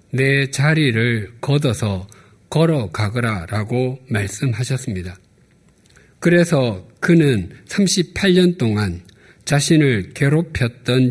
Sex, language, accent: male, Korean, native